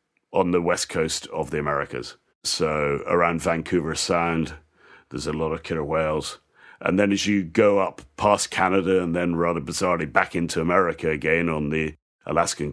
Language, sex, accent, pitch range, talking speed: English, male, British, 75-90 Hz, 170 wpm